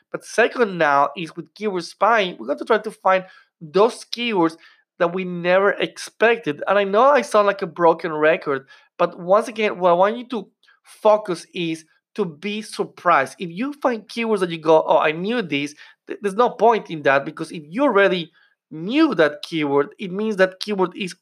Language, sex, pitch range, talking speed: English, male, 165-215 Hz, 195 wpm